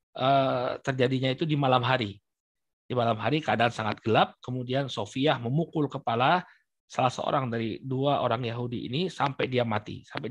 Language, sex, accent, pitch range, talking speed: Indonesian, male, native, 120-150 Hz, 150 wpm